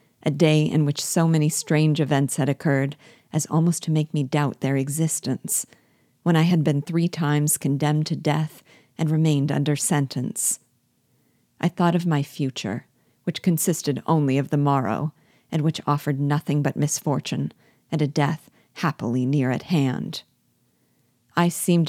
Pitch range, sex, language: 145-165 Hz, female, English